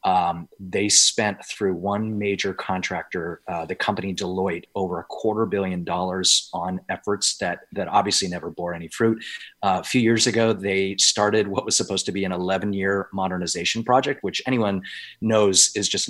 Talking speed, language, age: 170 wpm, English, 30-49